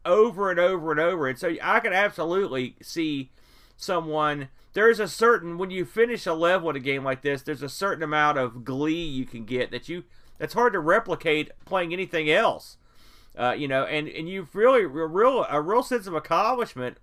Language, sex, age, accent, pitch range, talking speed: English, male, 40-59, American, 140-190 Hz, 200 wpm